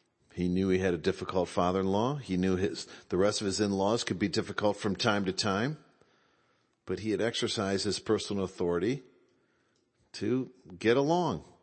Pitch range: 100-135 Hz